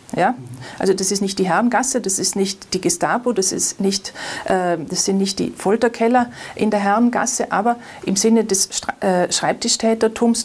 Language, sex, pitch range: German, female, 190-230 Hz